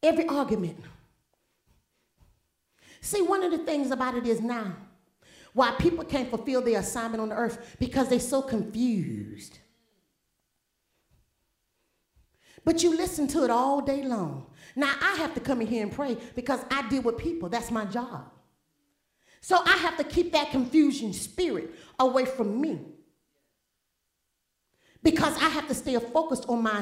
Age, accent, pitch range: 40-59, American, 215-300 Hz